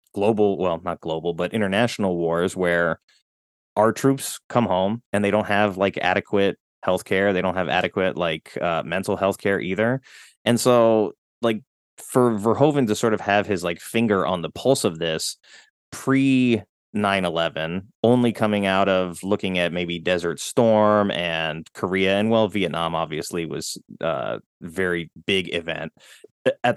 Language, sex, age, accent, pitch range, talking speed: English, male, 20-39, American, 90-115 Hz, 155 wpm